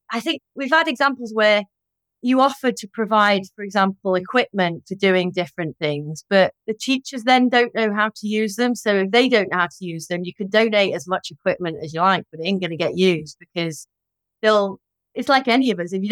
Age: 30-49